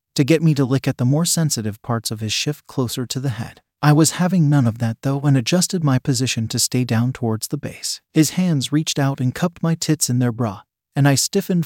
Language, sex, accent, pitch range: English, male, American, 120-155 Hz